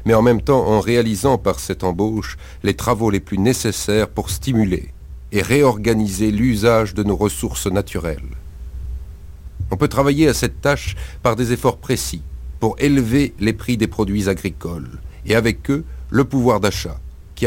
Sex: male